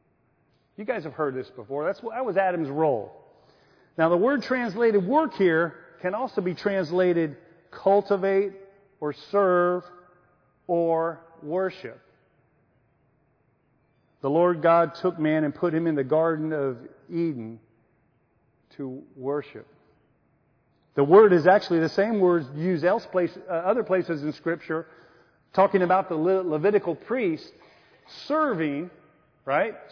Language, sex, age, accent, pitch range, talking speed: English, male, 40-59, American, 160-230 Hz, 130 wpm